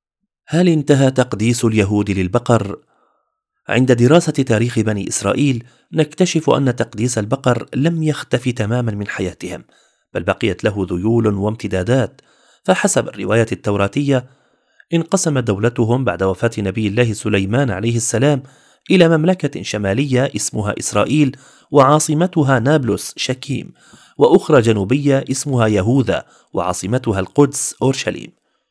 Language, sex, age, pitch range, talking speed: Arabic, male, 30-49, 105-140 Hz, 105 wpm